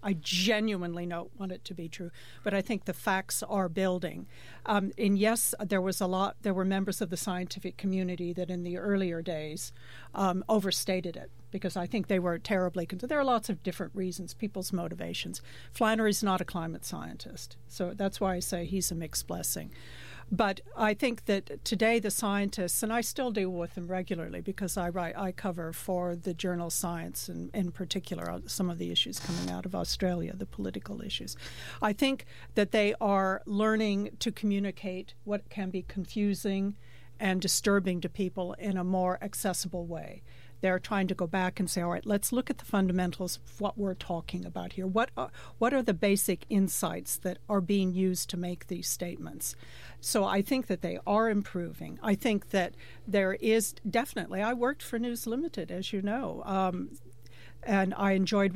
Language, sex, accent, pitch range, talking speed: English, female, American, 180-205 Hz, 190 wpm